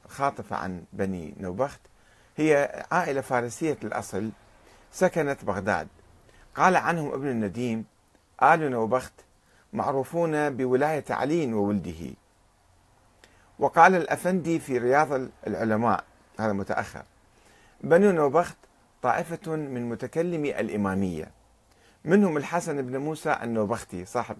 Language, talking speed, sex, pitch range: Arabic, 95 wpm, male, 105-150 Hz